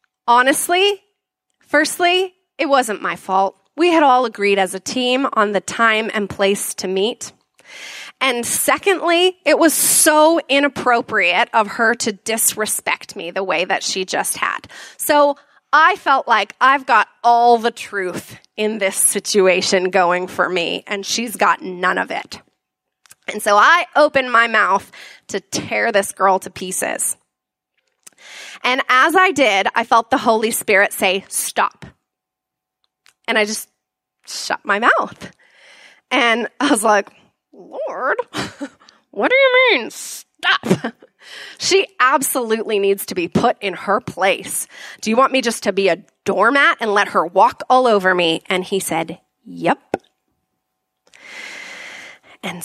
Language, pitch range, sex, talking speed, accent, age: English, 200-290 Hz, female, 145 wpm, American, 20-39